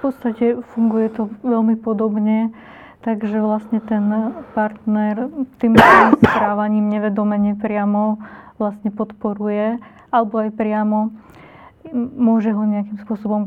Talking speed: 105 wpm